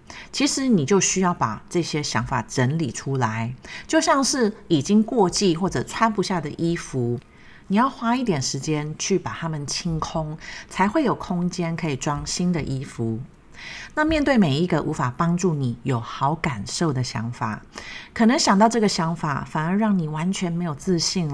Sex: female